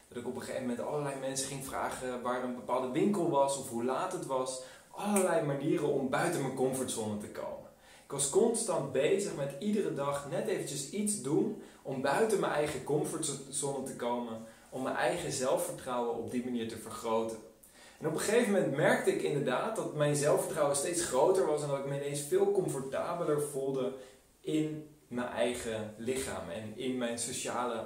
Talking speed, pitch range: 185 wpm, 125-150 Hz